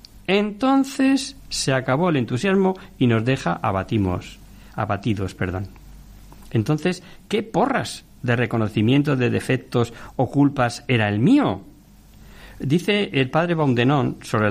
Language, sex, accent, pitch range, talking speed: Spanish, male, Spanish, 110-170 Hz, 115 wpm